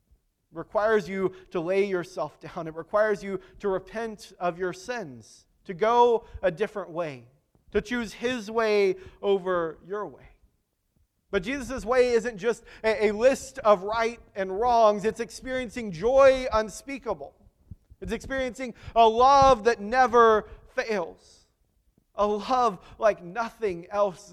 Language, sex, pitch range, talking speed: English, male, 205-255 Hz, 135 wpm